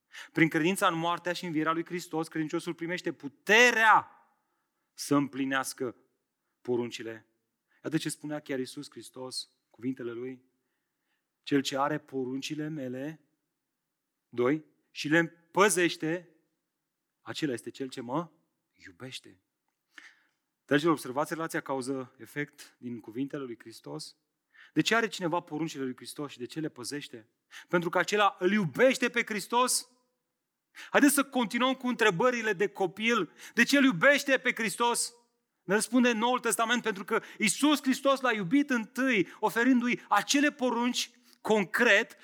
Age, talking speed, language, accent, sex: 30-49, 135 wpm, Romanian, native, male